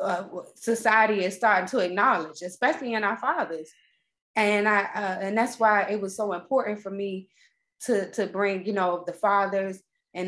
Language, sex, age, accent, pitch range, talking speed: English, female, 20-39, American, 180-230 Hz, 175 wpm